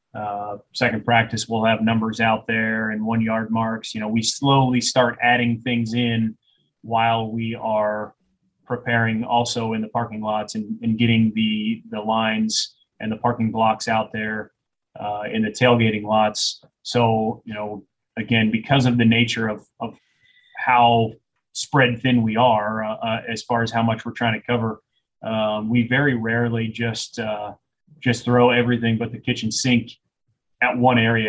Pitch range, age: 110-120 Hz, 30-49